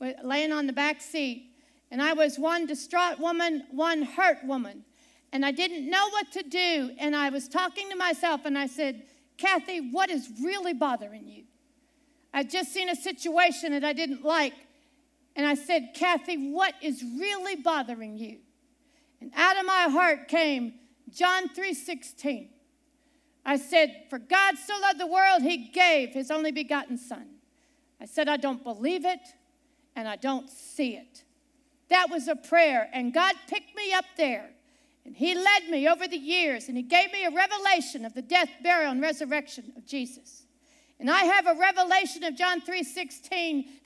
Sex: female